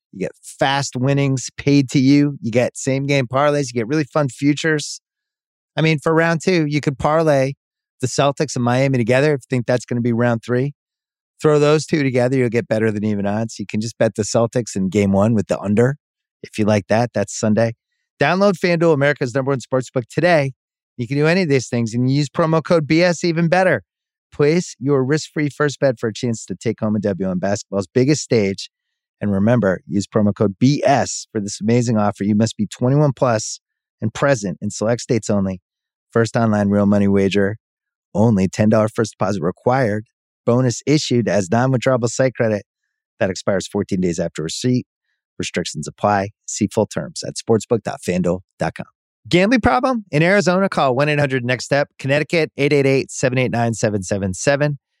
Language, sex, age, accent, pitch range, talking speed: English, male, 30-49, American, 110-145 Hz, 175 wpm